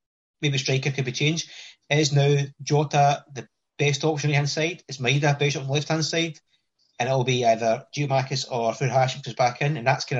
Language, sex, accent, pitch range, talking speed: English, male, British, 130-160 Hz, 230 wpm